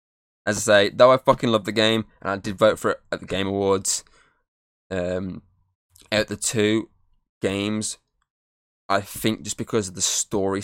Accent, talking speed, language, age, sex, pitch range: British, 175 wpm, English, 10-29, male, 95-110 Hz